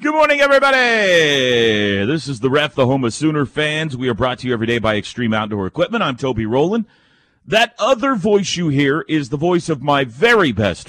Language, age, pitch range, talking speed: English, 40-59, 120-165 Hz, 210 wpm